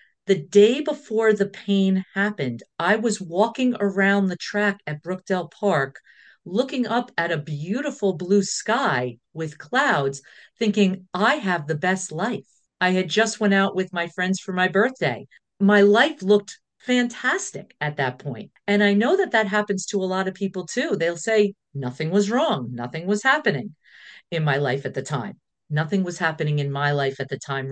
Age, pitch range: 50-69, 145-200 Hz